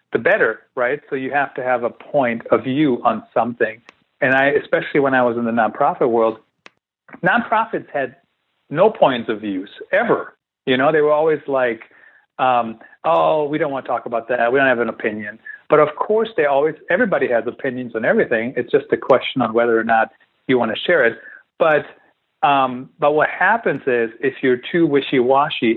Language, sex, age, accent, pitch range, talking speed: English, male, 40-59, American, 125-185 Hz, 195 wpm